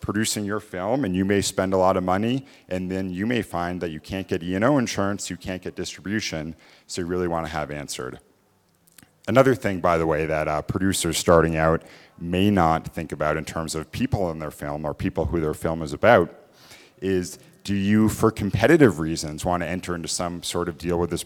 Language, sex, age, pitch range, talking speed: English, male, 40-59, 80-105 Hz, 210 wpm